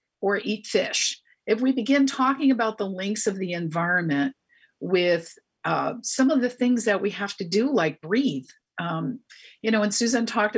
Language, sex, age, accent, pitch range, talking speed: English, female, 50-69, American, 165-230 Hz, 180 wpm